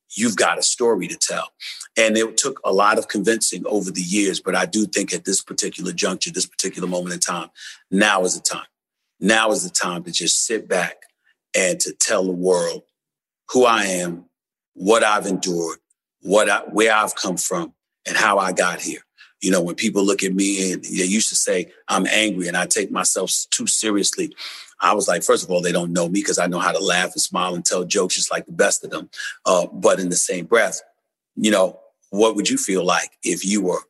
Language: English